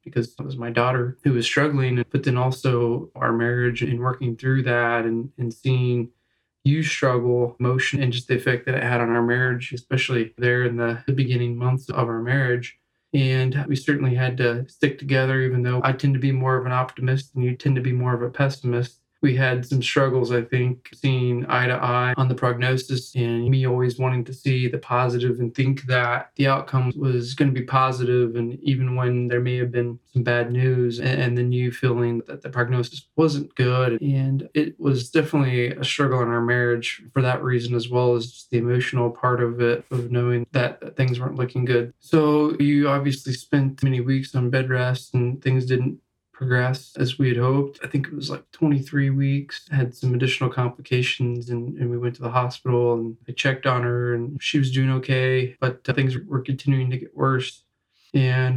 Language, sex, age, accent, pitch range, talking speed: English, male, 20-39, American, 120-135 Hz, 205 wpm